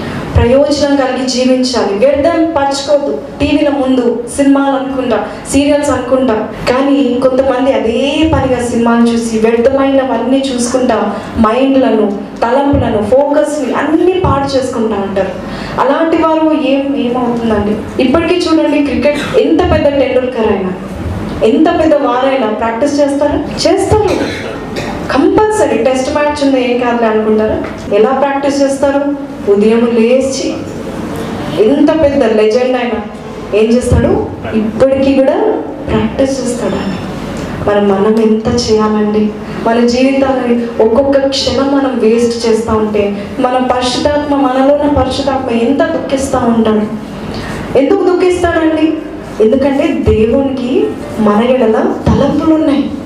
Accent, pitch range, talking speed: native, 225-280 Hz, 105 wpm